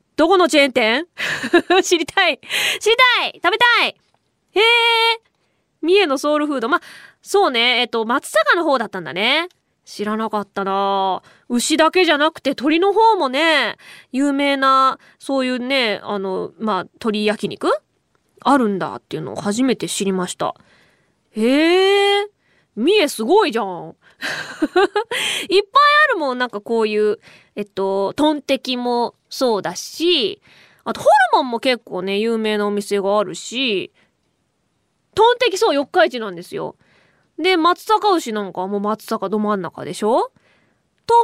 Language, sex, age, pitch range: Japanese, female, 20-39, 210-345 Hz